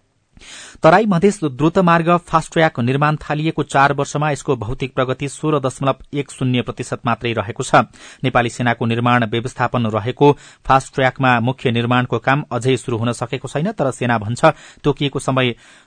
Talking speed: 130 wpm